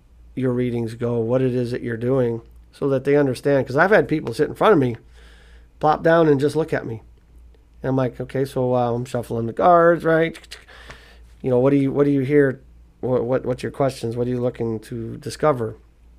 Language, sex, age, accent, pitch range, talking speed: English, male, 40-59, American, 115-145 Hz, 220 wpm